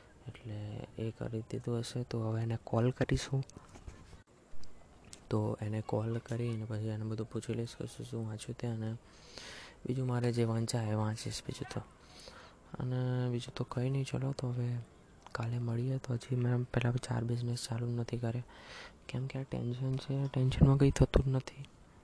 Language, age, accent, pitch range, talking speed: Gujarati, 20-39, native, 115-130 Hz, 130 wpm